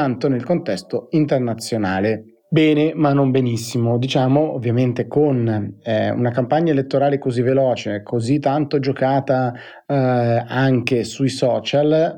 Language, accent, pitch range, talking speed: Italian, native, 120-145 Hz, 120 wpm